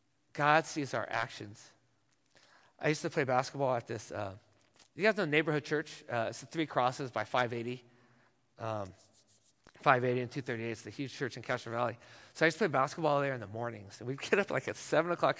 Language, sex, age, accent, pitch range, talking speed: English, male, 40-59, American, 120-165 Hz, 215 wpm